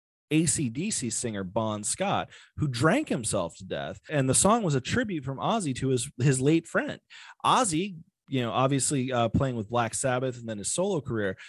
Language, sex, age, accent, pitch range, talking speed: English, male, 30-49, American, 115-170 Hz, 190 wpm